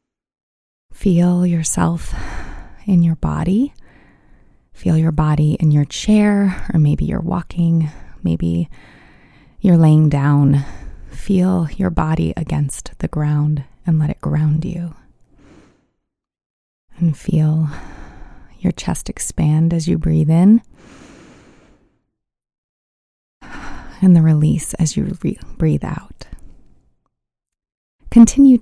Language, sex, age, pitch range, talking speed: English, female, 20-39, 150-185 Hz, 100 wpm